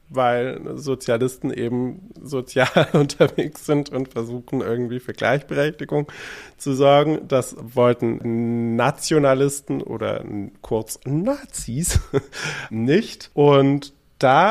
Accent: German